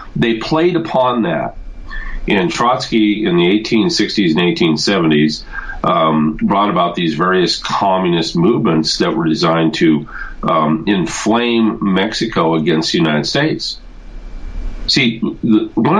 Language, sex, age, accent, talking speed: English, male, 50-69, American, 115 wpm